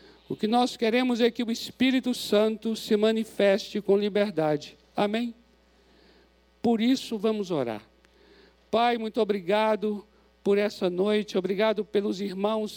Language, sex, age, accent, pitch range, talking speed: Portuguese, male, 60-79, Brazilian, 210-245 Hz, 125 wpm